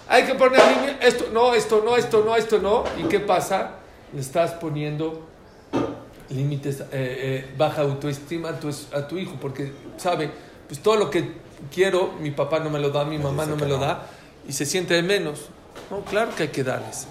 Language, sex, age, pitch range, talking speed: English, male, 50-69, 140-225 Hz, 185 wpm